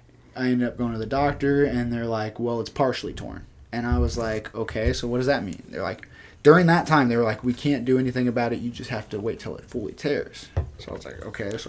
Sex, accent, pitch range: male, American, 110-130 Hz